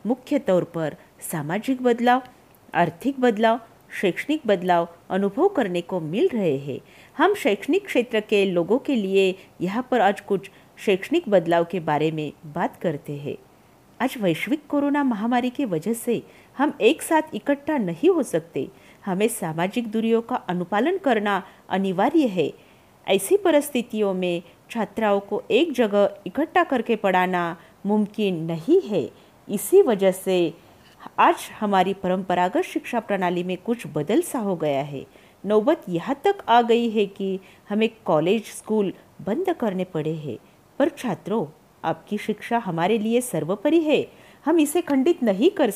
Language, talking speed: Marathi, 145 wpm